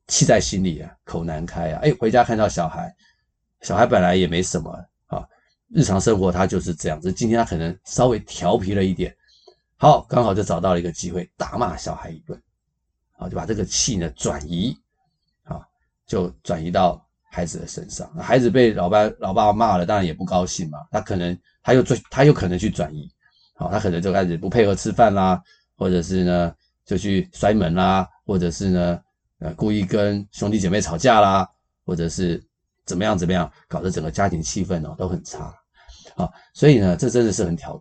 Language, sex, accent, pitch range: Chinese, male, native, 85-105 Hz